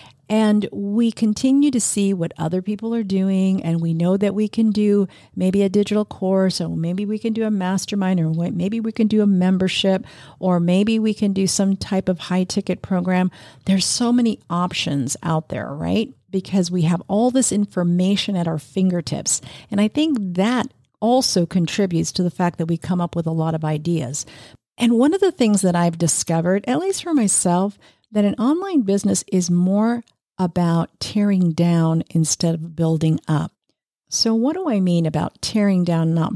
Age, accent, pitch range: 50-69, American, 165-205 Hz